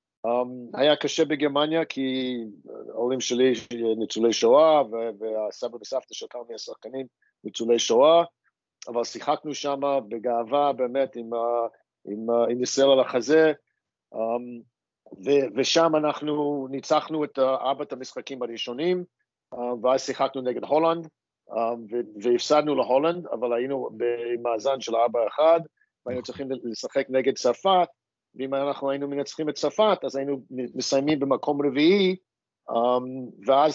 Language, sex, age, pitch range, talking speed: Hebrew, male, 50-69, 120-145 Hz, 120 wpm